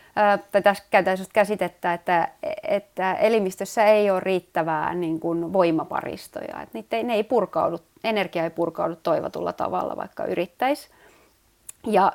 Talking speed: 125 wpm